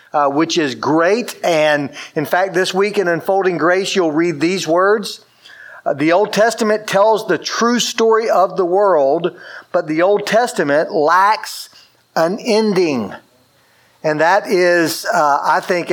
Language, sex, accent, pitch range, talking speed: English, male, American, 165-205 Hz, 150 wpm